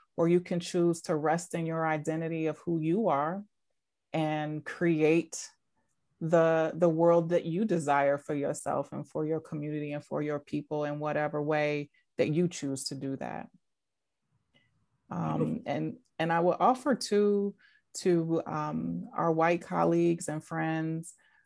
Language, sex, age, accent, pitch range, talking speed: English, female, 30-49, American, 145-165 Hz, 150 wpm